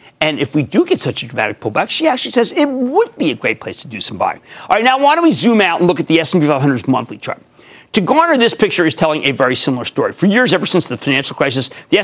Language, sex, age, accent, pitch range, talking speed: English, male, 40-59, American, 145-225 Hz, 280 wpm